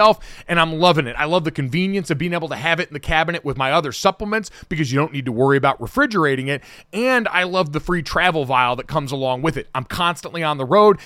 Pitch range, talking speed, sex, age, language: 140-185 Hz, 255 wpm, male, 30-49, English